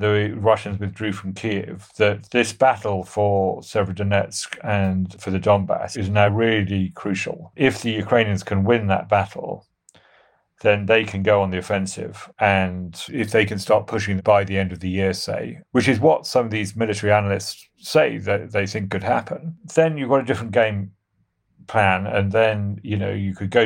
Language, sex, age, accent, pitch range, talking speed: English, male, 40-59, British, 95-110 Hz, 185 wpm